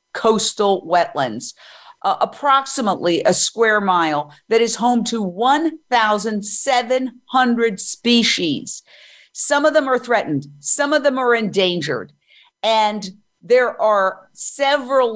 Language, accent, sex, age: English, American, female, 50-69